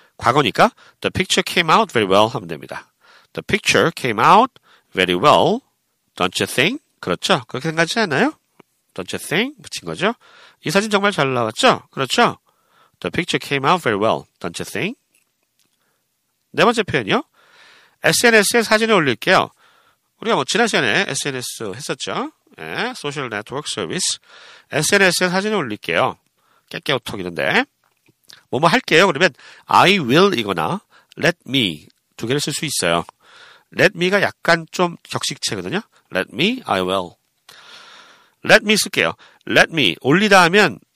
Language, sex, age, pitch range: Korean, male, 40-59, 130-215 Hz